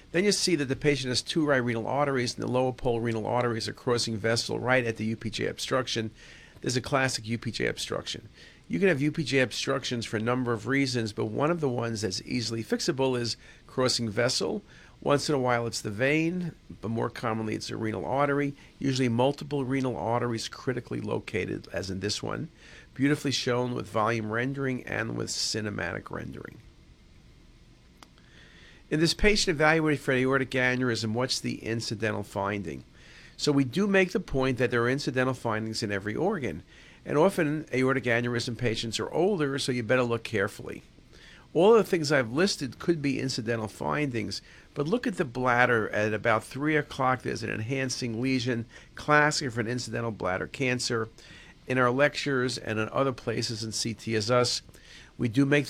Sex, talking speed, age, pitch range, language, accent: male, 175 wpm, 50-69, 115-135 Hz, English, American